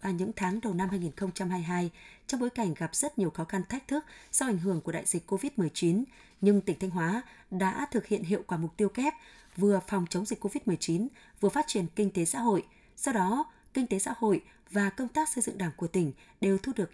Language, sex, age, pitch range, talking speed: Vietnamese, female, 20-39, 180-225 Hz, 225 wpm